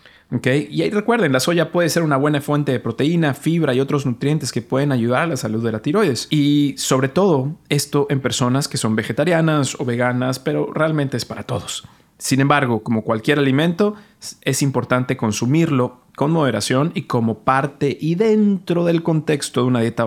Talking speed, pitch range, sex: 185 wpm, 115-150 Hz, male